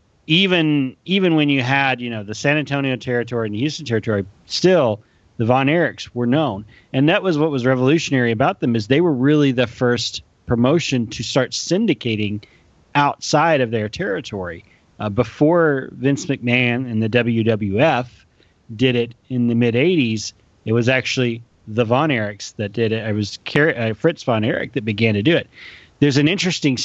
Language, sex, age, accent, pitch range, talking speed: English, male, 30-49, American, 110-140 Hz, 175 wpm